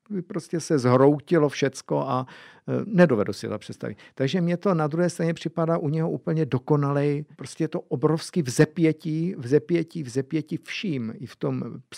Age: 50-69